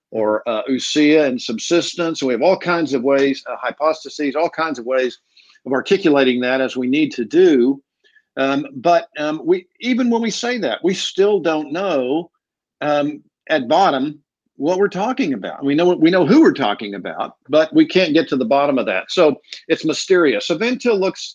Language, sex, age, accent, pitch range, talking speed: English, male, 50-69, American, 130-170 Hz, 190 wpm